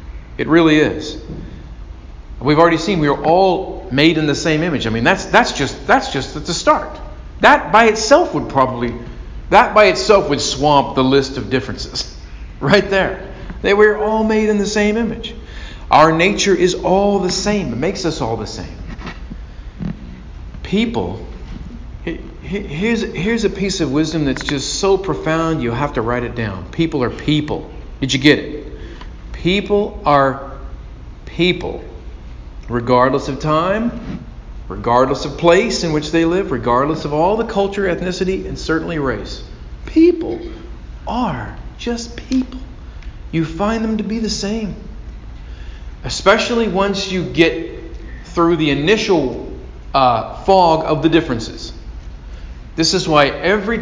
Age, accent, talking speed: 40-59, American, 150 wpm